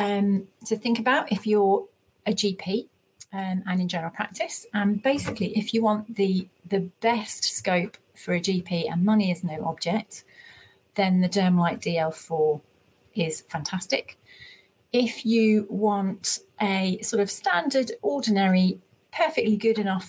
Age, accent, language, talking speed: 40-59, British, English, 140 wpm